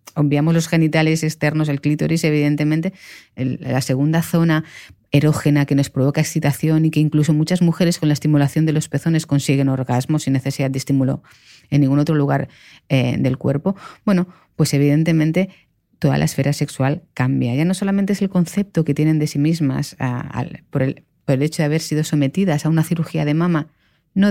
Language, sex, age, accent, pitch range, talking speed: Spanish, female, 30-49, Spanish, 140-165 Hz, 180 wpm